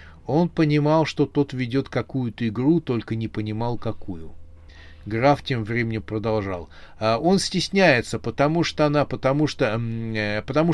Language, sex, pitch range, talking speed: Russian, male, 100-140 Hz, 135 wpm